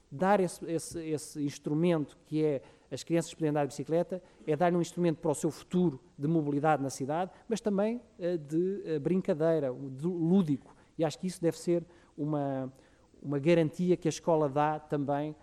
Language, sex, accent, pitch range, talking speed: Portuguese, male, Portuguese, 135-165 Hz, 170 wpm